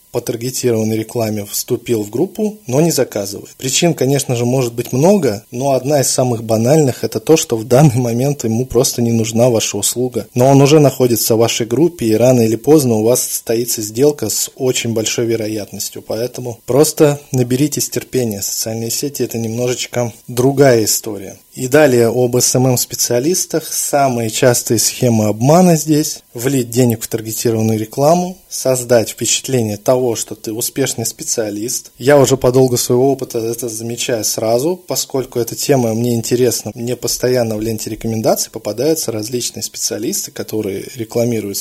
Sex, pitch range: male, 115-135 Hz